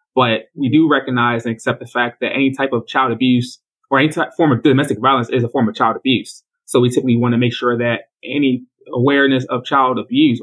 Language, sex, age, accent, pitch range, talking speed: English, male, 20-39, American, 110-135 Hz, 230 wpm